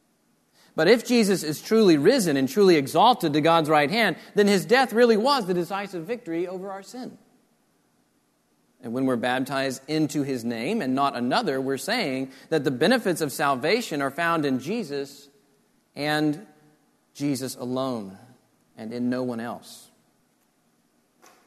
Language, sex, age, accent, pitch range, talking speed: English, male, 40-59, American, 135-200 Hz, 150 wpm